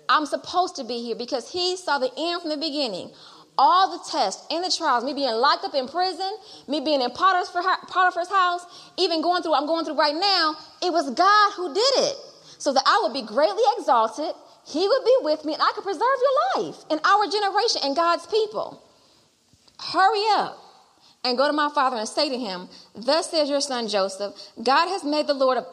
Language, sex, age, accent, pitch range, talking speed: English, female, 30-49, American, 255-360 Hz, 210 wpm